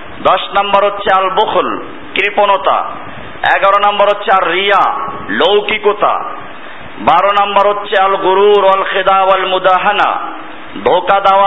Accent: native